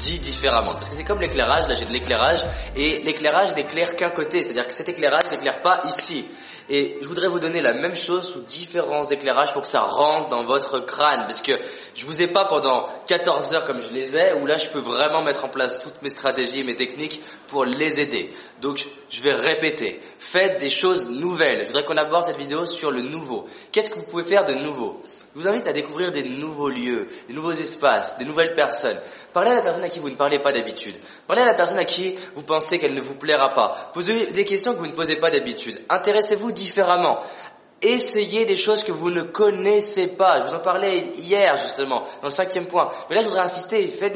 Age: 20-39